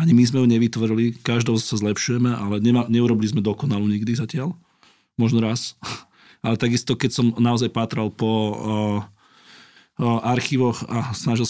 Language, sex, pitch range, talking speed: Slovak, male, 105-115 Hz, 145 wpm